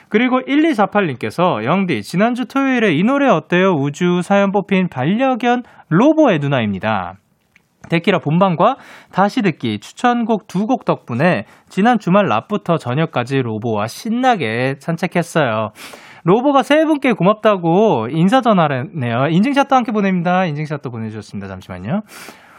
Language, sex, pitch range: Korean, male, 135-215 Hz